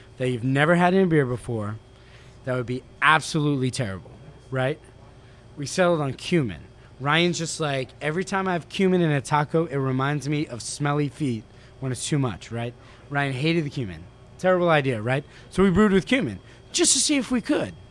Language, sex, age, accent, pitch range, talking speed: English, male, 20-39, American, 125-155 Hz, 190 wpm